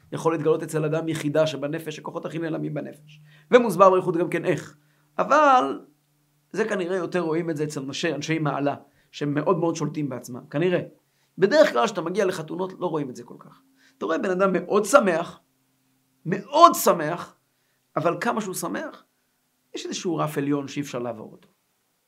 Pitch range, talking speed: 150-215 Hz, 170 wpm